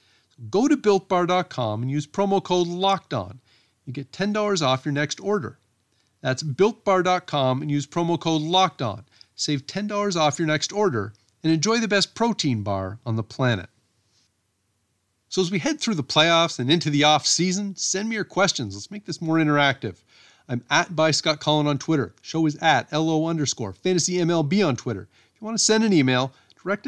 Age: 40-59